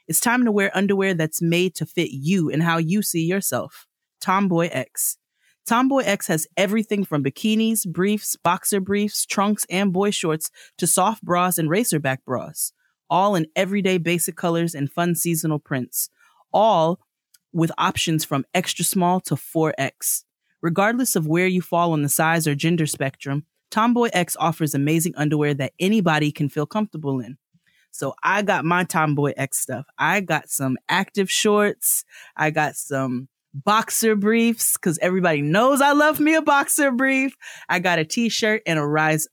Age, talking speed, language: 30-49, 165 wpm, English